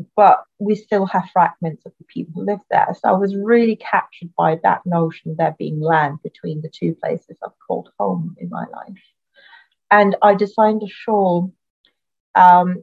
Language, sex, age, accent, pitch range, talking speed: English, female, 40-59, British, 175-205 Hz, 180 wpm